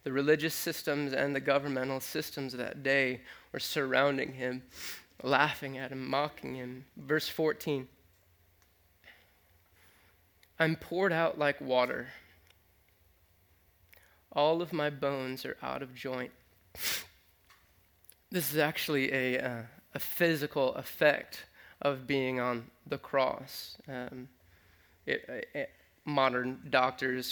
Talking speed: 110 wpm